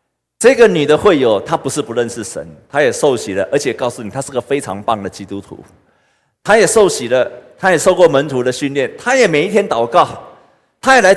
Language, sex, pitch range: Chinese, male, 110-185 Hz